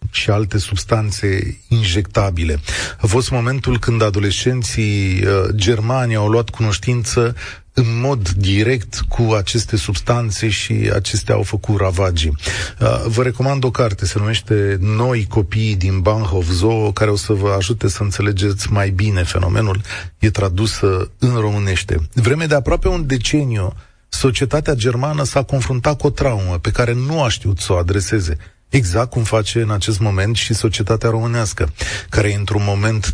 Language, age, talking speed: Romanian, 30-49, 150 wpm